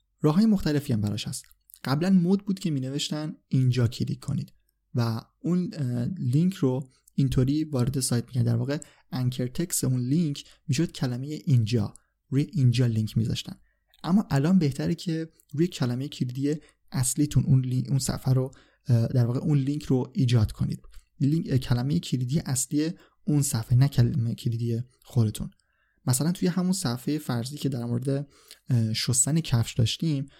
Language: Persian